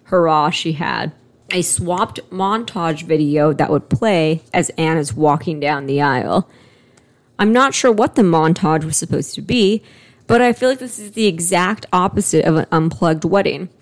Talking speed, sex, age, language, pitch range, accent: 175 wpm, female, 20-39, English, 160-200 Hz, American